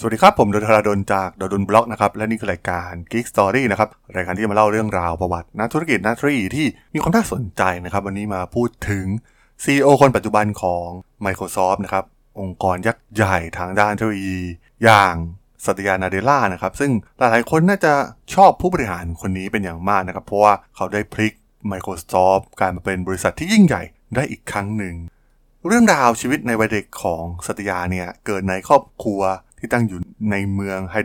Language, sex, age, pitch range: Thai, male, 20-39, 95-115 Hz